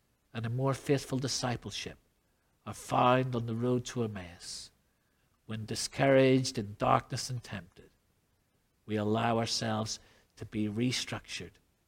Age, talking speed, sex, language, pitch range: 50-69, 120 wpm, male, English, 105-135 Hz